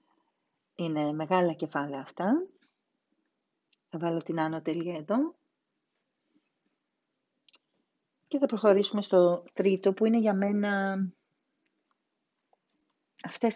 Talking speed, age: 85 wpm, 40-59